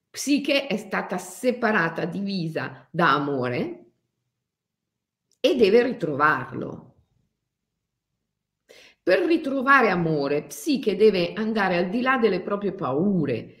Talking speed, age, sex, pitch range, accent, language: 95 wpm, 50-69, female, 180-270 Hz, native, Italian